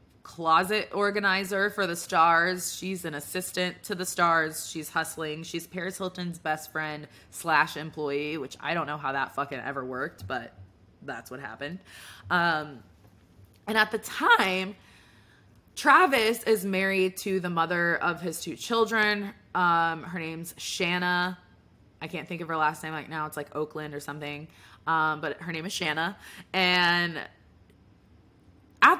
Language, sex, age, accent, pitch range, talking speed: English, female, 20-39, American, 145-195 Hz, 155 wpm